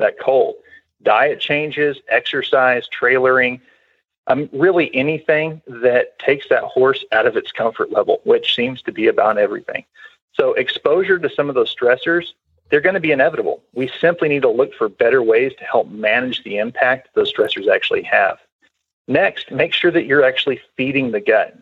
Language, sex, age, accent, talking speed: English, male, 40-59, American, 170 wpm